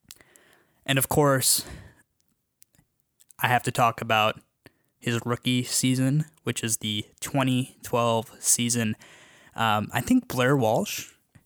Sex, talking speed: male, 115 wpm